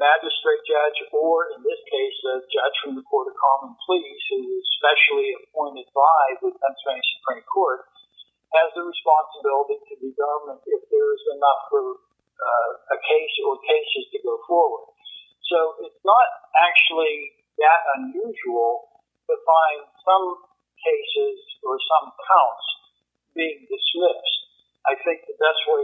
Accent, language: American, English